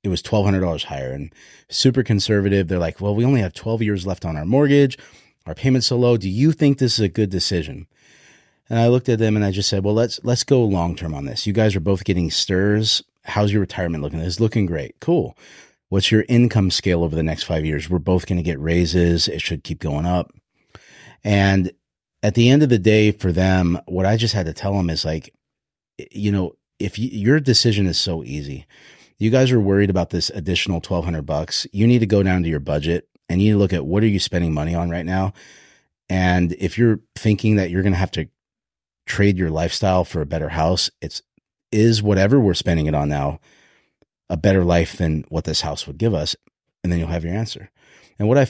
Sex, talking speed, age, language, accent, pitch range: male, 225 wpm, 30-49, English, American, 85-110 Hz